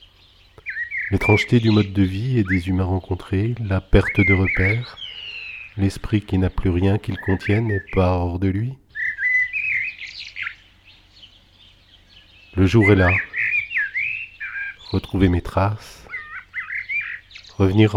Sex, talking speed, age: male, 110 wpm, 50-69